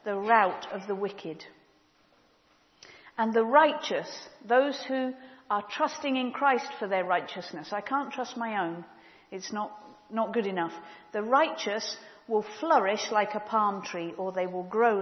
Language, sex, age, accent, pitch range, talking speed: English, female, 50-69, British, 200-250 Hz, 155 wpm